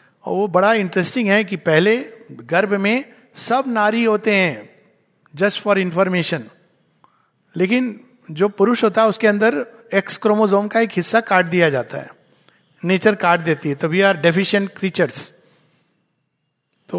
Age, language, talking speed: 50-69, Hindi, 150 wpm